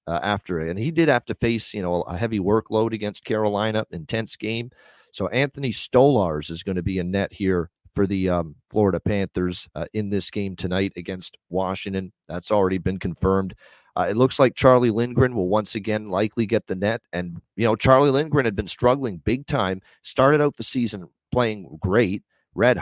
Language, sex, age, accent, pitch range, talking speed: English, male, 40-59, American, 95-115 Hz, 190 wpm